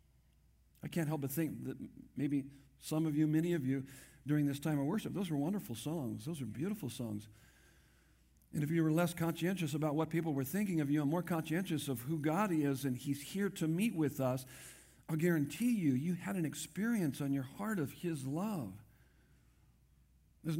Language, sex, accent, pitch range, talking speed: English, male, American, 120-165 Hz, 195 wpm